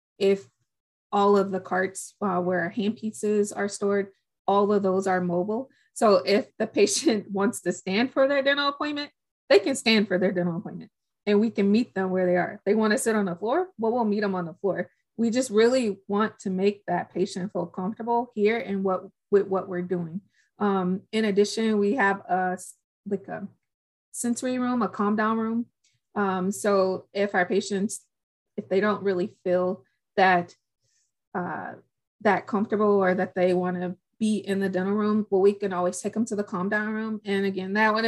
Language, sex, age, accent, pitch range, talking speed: English, female, 20-39, American, 185-210 Hz, 195 wpm